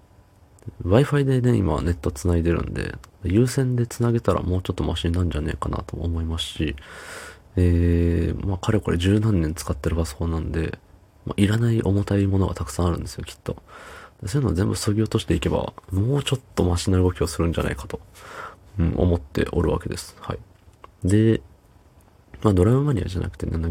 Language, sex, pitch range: Japanese, male, 85-105 Hz